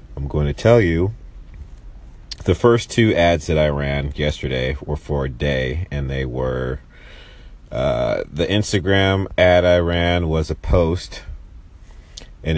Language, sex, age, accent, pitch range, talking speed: English, male, 40-59, American, 75-90 Hz, 145 wpm